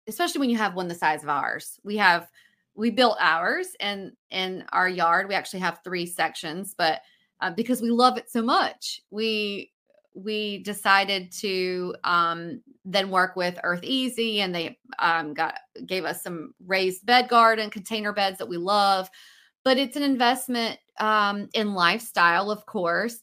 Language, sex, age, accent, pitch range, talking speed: English, female, 30-49, American, 180-225 Hz, 170 wpm